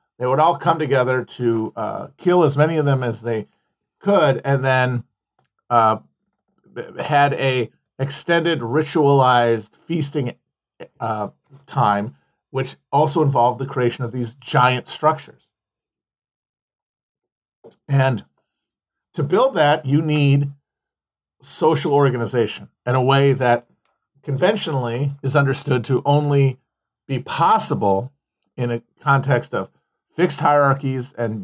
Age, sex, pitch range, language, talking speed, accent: 50-69, male, 120-140 Hz, English, 115 wpm, American